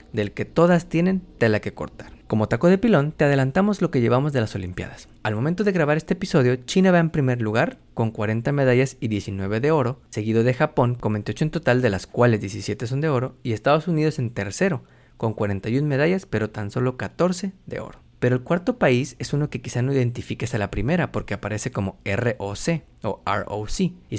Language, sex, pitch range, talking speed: Spanish, male, 110-150 Hz, 210 wpm